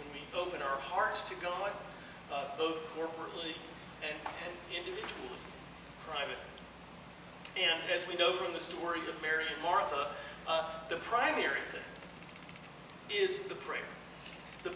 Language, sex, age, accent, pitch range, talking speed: English, male, 40-59, American, 165-215 Hz, 125 wpm